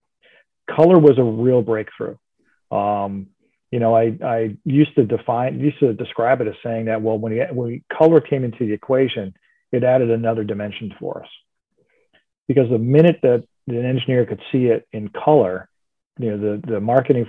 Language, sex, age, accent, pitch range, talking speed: English, male, 40-59, American, 105-130 Hz, 180 wpm